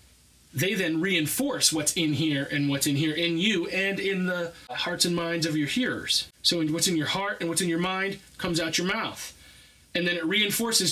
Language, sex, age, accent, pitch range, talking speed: English, male, 30-49, American, 145-210 Hz, 215 wpm